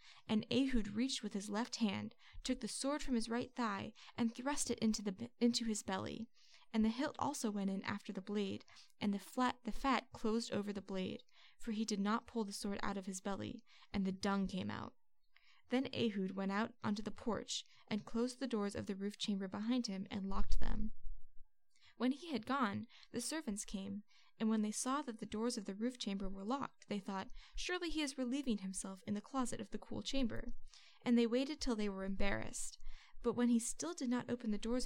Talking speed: 215 wpm